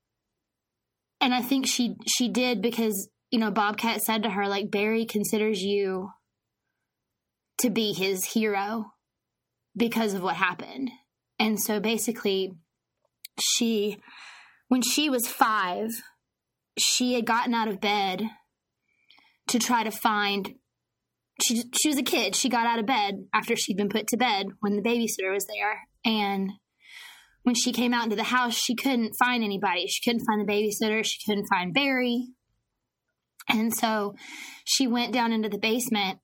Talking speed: 155 wpm